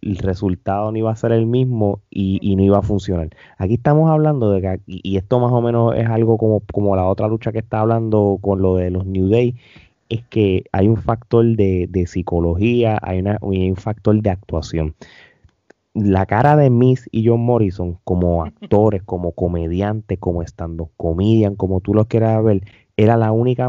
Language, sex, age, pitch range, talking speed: Spanish, male, 30-49, 95-120 Hz, 195 wpm